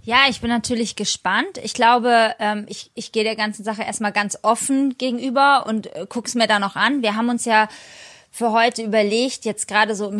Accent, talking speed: German, 205 wpm